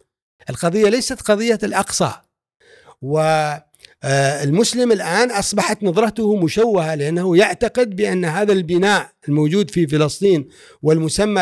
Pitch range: 170-225 Hz